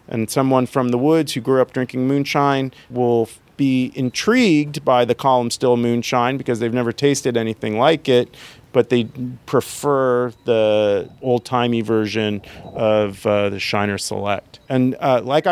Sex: male